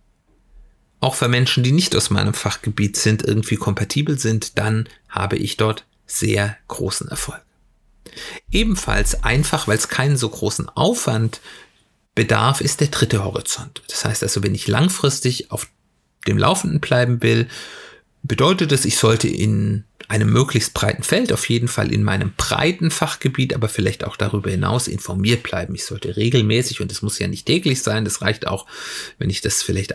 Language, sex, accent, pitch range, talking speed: German, male, German, 105-130 Hz, 165 wpm